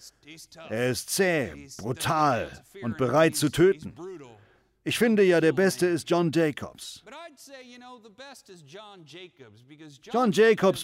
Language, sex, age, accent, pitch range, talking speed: German, male, 50-69, German, 150-210 Hz, 100 wpm